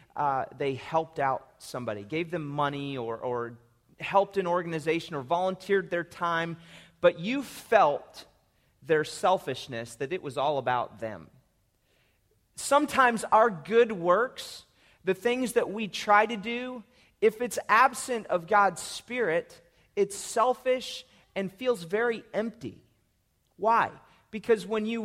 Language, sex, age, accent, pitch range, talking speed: English, male, 30-49, American, 165-220 Hz, 130 wpm